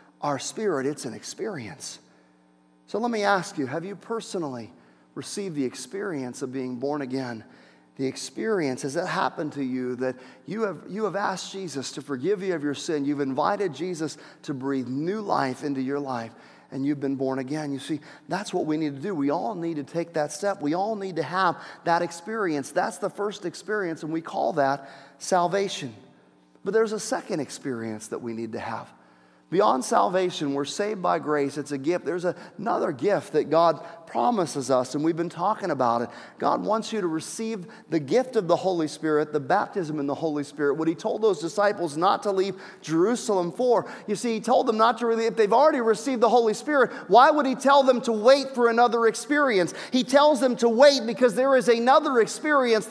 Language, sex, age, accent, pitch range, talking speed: English, male, 40-59, American, 140-220 Hz, 205 wpm